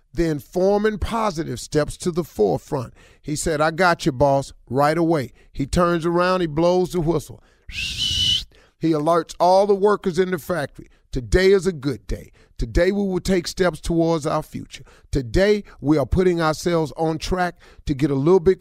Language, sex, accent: English, male, American